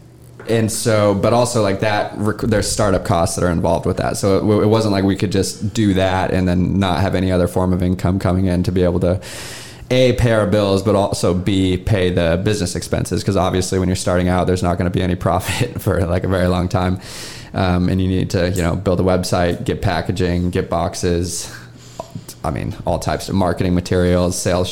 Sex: male